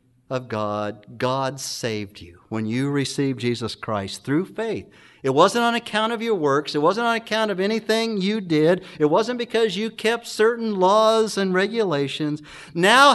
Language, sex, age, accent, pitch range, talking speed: English, male, 50-69, American, 140-210 Hz, 170 wpm